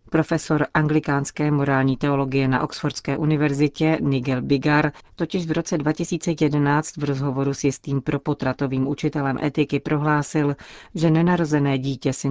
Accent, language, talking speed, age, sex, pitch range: native, Czech, 125 wpm, 40-59, female, 135-150 Hz